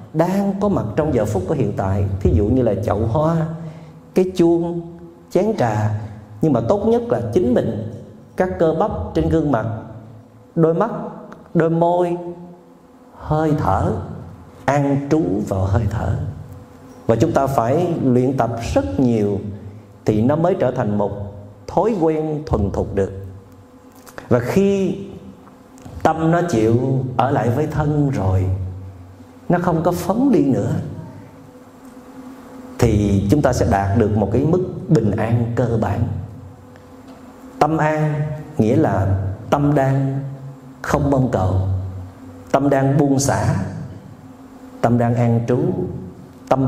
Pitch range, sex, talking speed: 105-160 Hz, male, 140 wpm